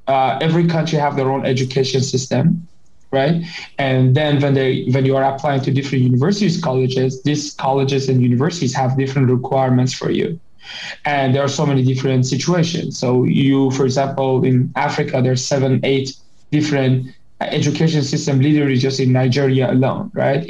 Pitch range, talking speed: 130-150 Hz, 160 wpm